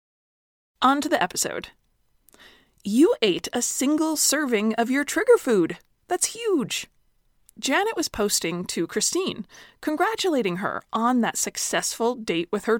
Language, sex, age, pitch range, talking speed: English, female, 20-39, 200-310 Hz, 130 wpm